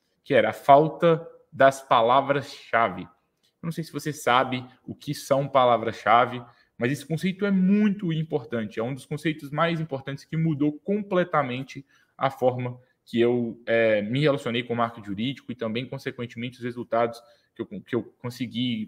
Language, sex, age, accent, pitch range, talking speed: English, male, 20-39, Brazilian, 115-140 Hz, 160 wpm